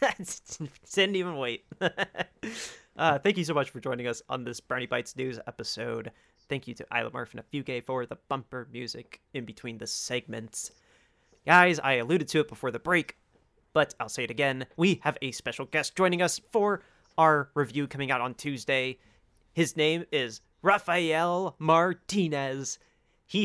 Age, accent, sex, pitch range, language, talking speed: 30-49, American, male, 120-150 Hz, English, 170 wpm